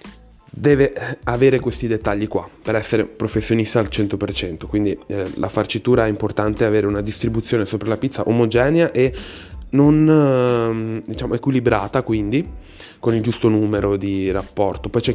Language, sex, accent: Italian, male, native